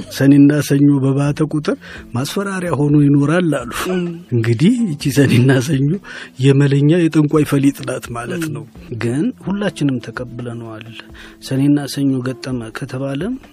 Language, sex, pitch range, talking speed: Amharic, male, 115-145 Hz, 100 wpm